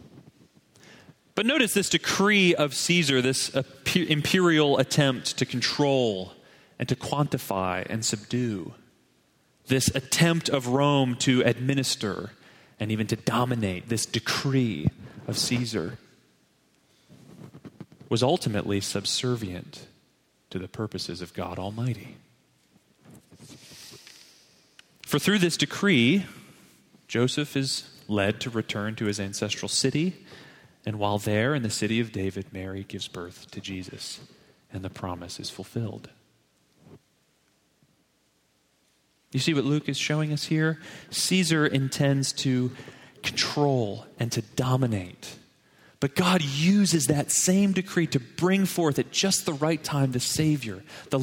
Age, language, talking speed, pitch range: 30-49, English, 120 wpm, 110-160 Hz